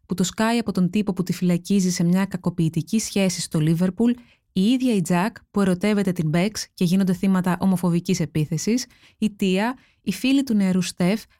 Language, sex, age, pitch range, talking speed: Greek, female, 20-39, 175-220 Hz, 185 wpm